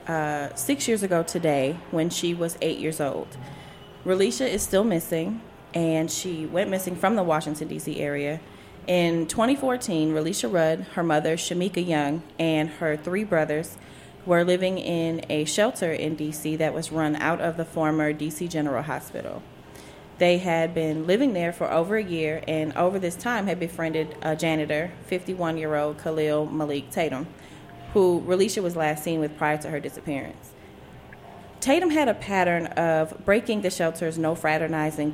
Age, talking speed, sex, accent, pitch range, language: 20-39, 160 wpm, female, American, 155-185 Hz, English